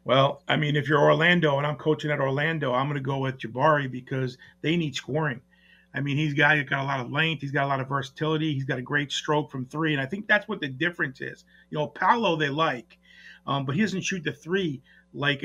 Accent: American